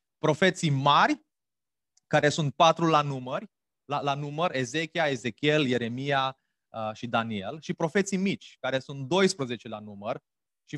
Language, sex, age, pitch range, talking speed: Romanian, male, 30-49, 140-175 Hz, 140 wpm